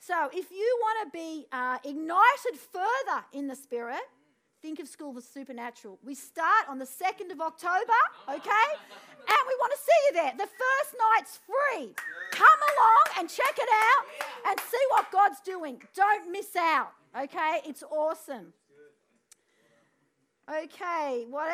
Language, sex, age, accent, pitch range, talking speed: English, female, 40-59, Australian, 280-370 Hz, 155 wpm